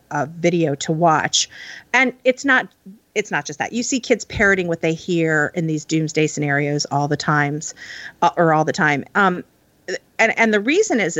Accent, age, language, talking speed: American, 40-59, English, 195 wpm